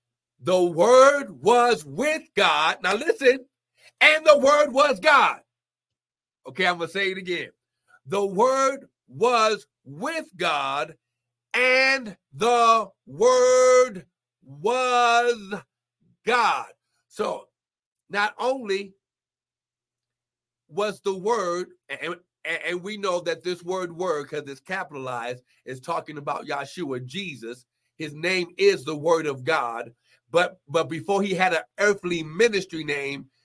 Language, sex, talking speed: English, male, 120 wpm